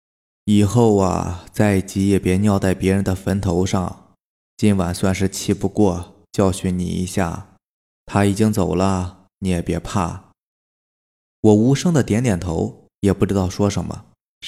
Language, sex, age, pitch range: Chinese, male, 20-39, 90-115 Hz